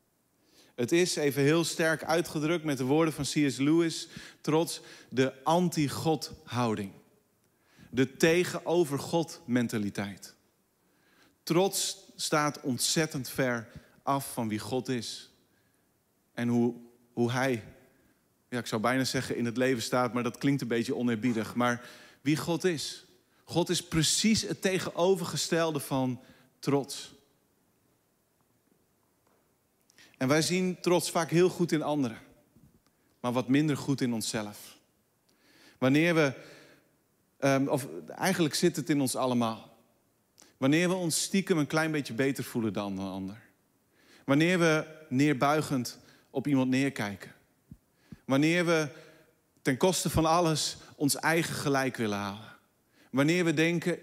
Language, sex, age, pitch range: Dutch, male, 40-59, 125-160 Hz